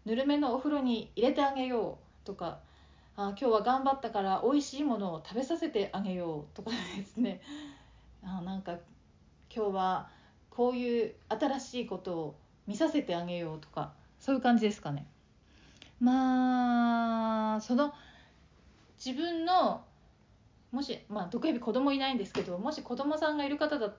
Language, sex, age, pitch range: Japanese, female, 40-59, 195-260 Hz